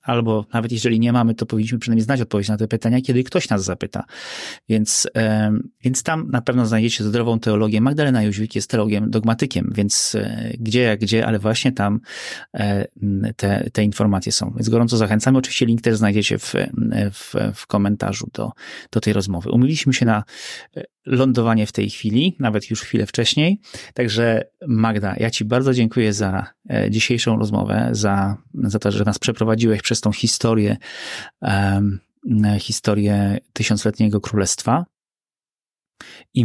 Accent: native